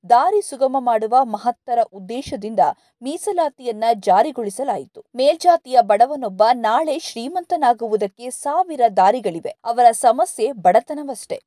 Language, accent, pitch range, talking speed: Kannada, native, 225-325 Hz, 85 wpm